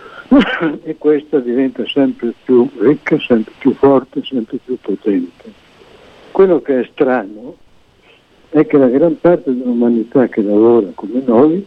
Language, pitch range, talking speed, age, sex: Italian, 115-155 Hz, 135 wpm, 60-79, male